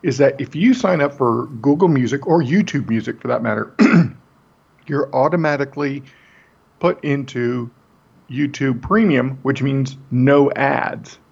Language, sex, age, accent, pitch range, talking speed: English, male, 50-69, American, 120-160 Hz, 135 wpm